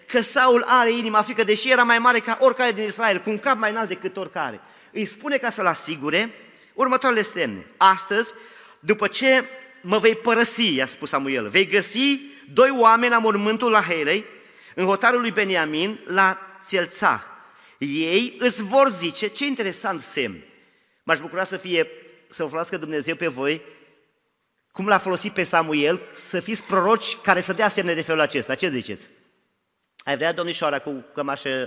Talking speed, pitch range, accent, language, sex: 170 wpm, 155-225 Hz, native, Romanian, male